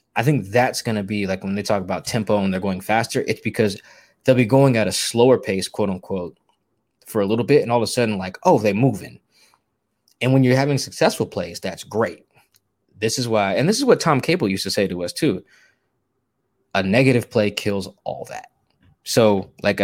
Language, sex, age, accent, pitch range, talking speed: English, male, 20-39, American, 100-130 Hz, 210 wpm